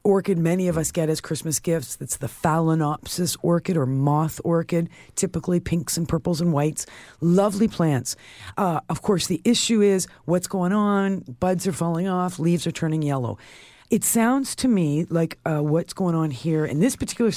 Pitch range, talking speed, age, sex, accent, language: 150-190 Hz, 185 wpm, 50-69, female, American, English